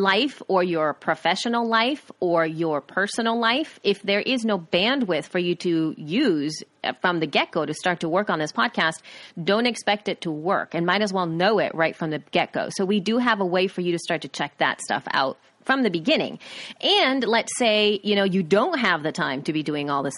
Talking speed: 230 wpm